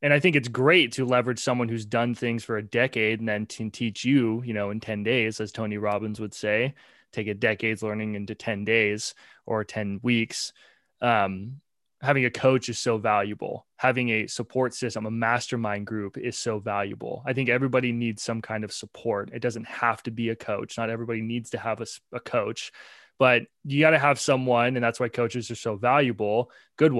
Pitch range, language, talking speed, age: 110-125 Hz, English, 205 wpm, 20-39